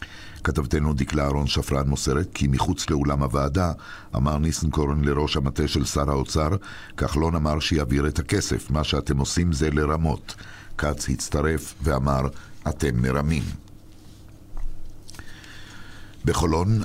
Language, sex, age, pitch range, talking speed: Hebrew, male, 60-79, 70-85 Hz, 115 wpm